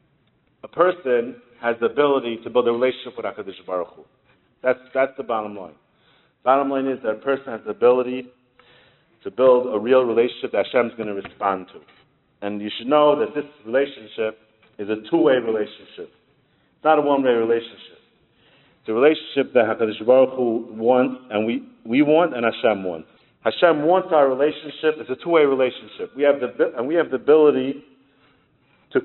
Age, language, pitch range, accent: 50-69, English, 120-150 Hz, American